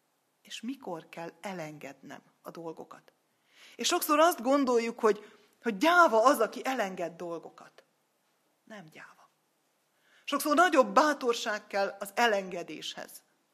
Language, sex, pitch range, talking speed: Hungarian, female, 180-235 Hz, 110 wpm